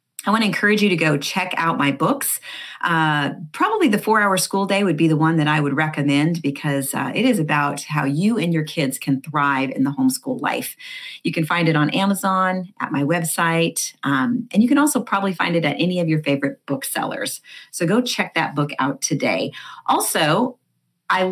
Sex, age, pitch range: female, 40-59, 150-195 Hz